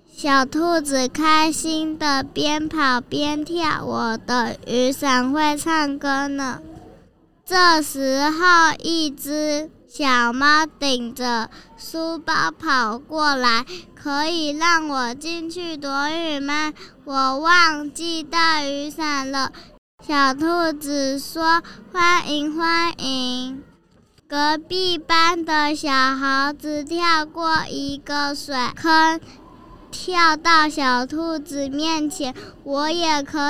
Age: 10-29